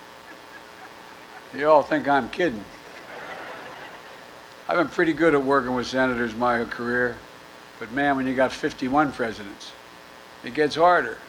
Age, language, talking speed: 60-79, English, 140 wpm